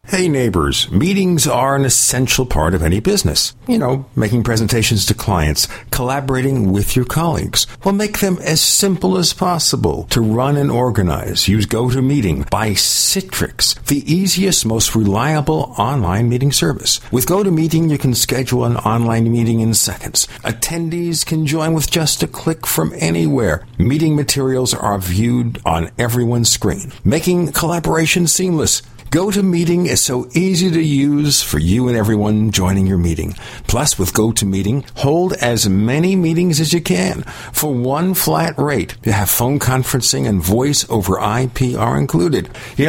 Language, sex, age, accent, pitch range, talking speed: English, male, 60-79, American, 115-165 Hz, 155 wpm